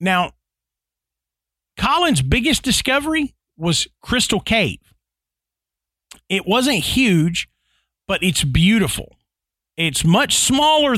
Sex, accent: male, American